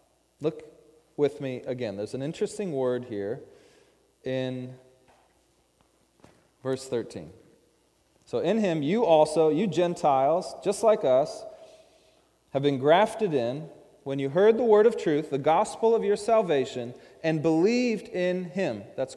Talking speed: 135 wpm